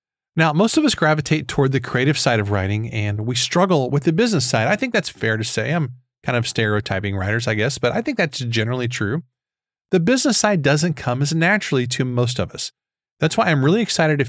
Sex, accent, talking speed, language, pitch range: male, American, 225 wpm, English, 120-170 Hz